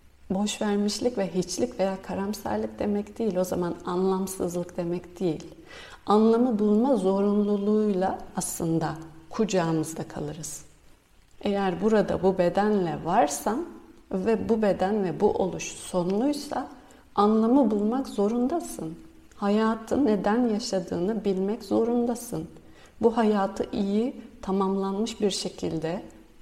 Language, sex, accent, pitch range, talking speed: Turkish, female, native, 180-220 Hz, 100 wpm